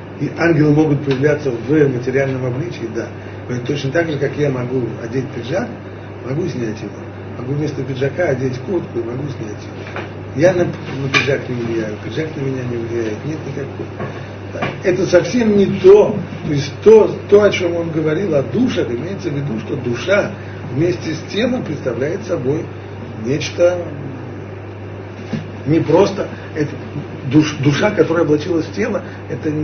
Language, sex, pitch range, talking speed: Russian, male, 105-150 Hz, 150 wpm